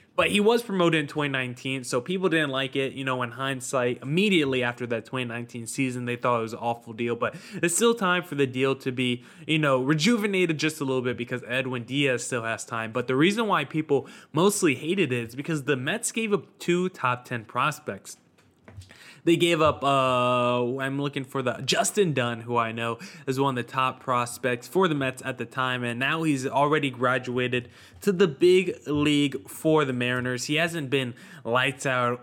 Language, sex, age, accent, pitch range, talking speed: English, male, 20-39, American, 125-155 Hz, 205 wpm